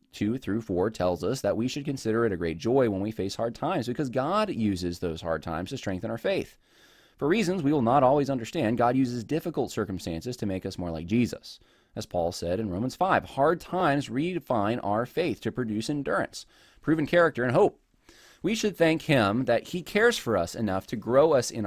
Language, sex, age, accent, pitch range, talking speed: English, male, 20-39, American, 95-125 Hz, 215 wpm